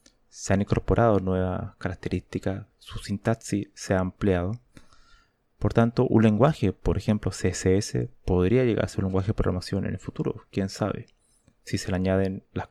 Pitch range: 95-110 Hz